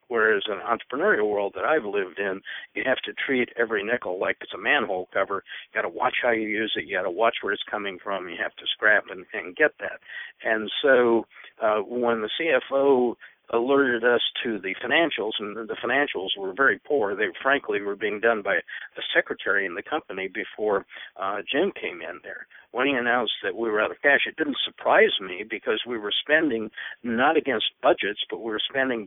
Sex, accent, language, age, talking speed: male, American, English, 60-79, 210 wpm